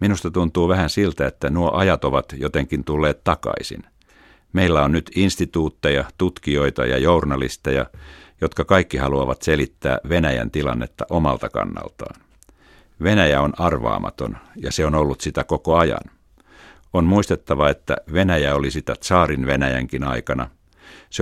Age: 50-69